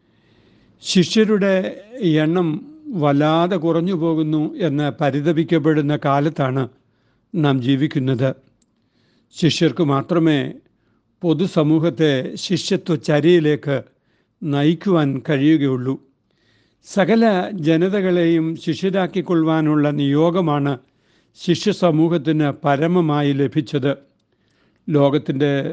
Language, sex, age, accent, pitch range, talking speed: Malayalam, male, 60-79, native, 140-170 Hz, 60 wpm